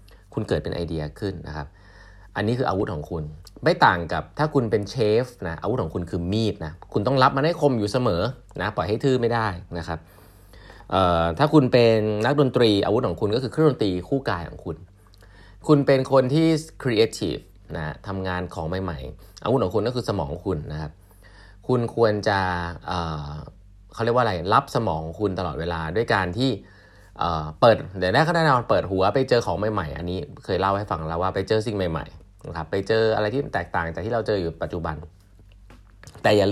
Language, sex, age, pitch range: Thai, male, 20-39, 90-120 Hz